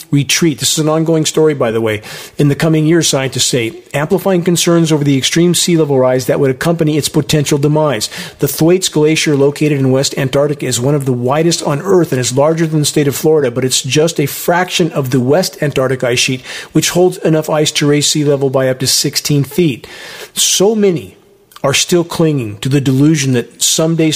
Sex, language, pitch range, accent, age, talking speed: male, English, 130-155 Hz, American, 40-59, 210 wpm